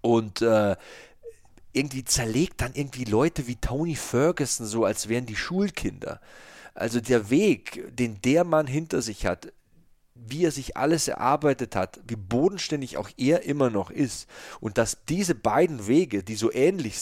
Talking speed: 160 wpm